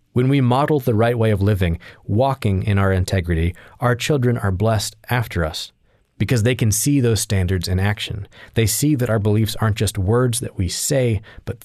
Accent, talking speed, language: American, 195 wpm, English